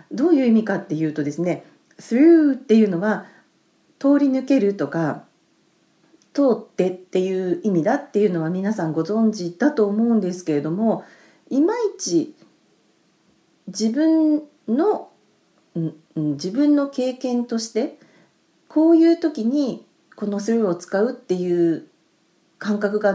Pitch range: 170-265 Hz